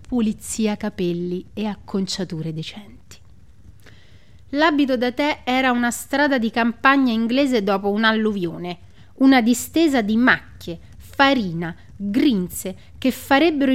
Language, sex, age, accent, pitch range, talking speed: Italian, female, 30-49, native, 190-260 Hz, 105 wpm